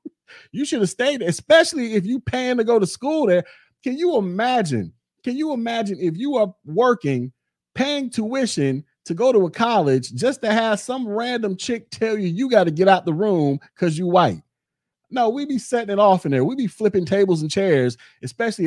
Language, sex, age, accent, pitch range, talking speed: English, male, 30-49, American, 145-215 Hz, 205 wpm